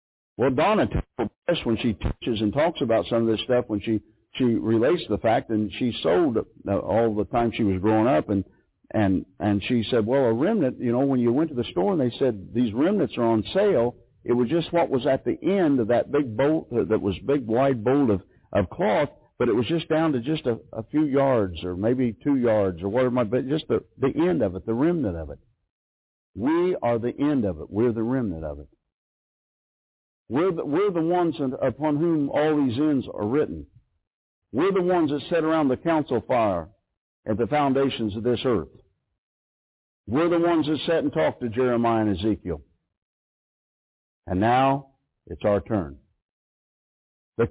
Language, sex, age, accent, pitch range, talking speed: English, male, 60-79, American, 105-135 Hz, 200 wpm